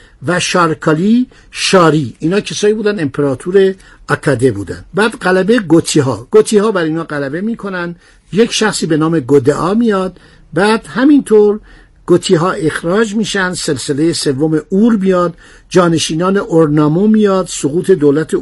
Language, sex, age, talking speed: Persian, male, 60-79, 130 wpm